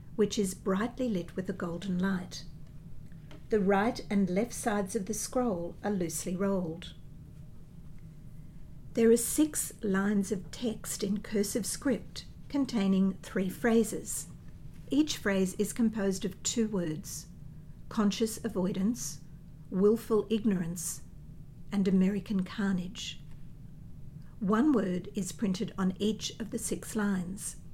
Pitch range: 180-210 Hz